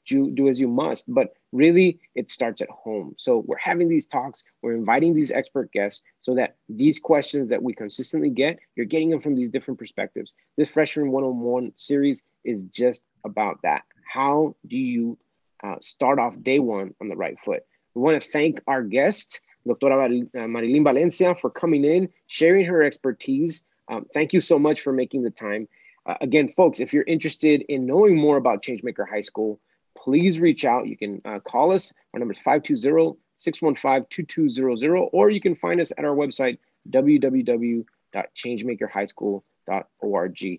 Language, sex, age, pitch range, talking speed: English, male, 30-49, 125-165 Hz, 165 wpm